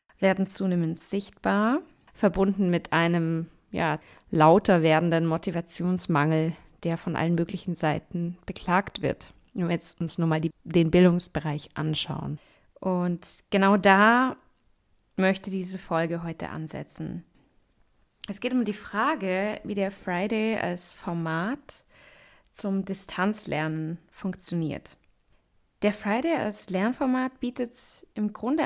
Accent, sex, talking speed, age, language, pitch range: German, female, 115 wpm, 20-39, German, 170-215 Hz